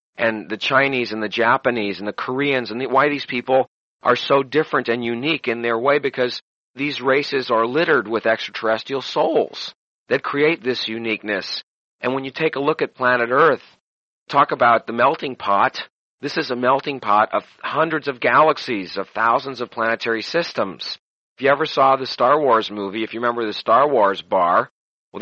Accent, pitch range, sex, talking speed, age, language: American, 115-135 Hz, male, 185 wpm, 40-59, English